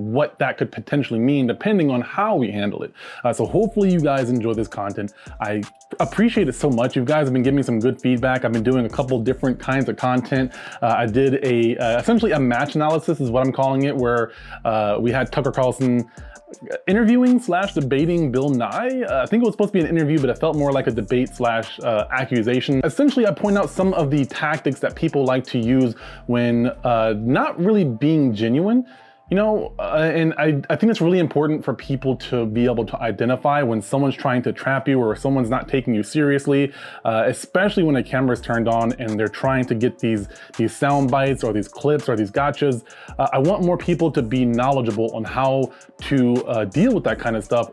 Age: 20-39